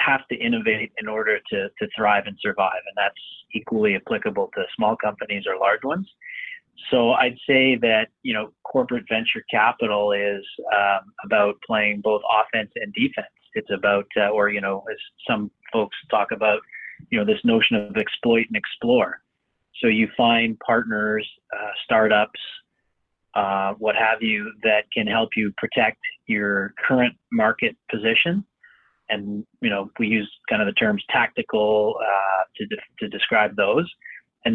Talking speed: 160 wpm